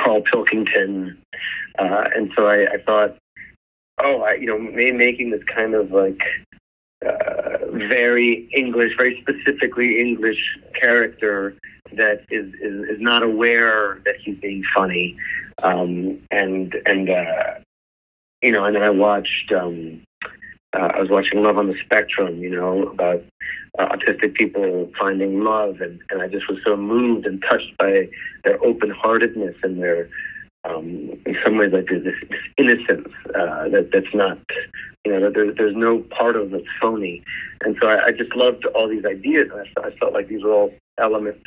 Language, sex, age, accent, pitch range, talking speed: English, male, 40-59, American, 95-120 Hz, 170 wpm